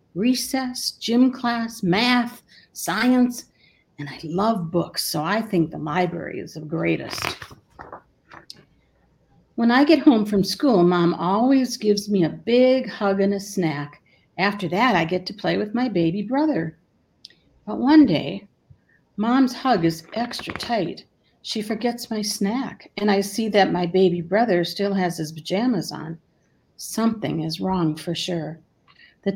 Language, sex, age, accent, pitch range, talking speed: English, female, 50-69, American, 175-235 Hz, 150 wpm